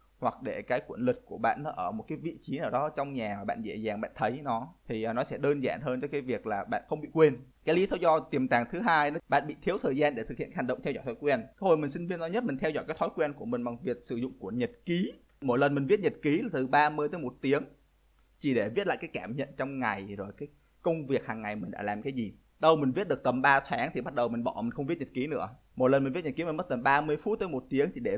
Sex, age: male, 20-39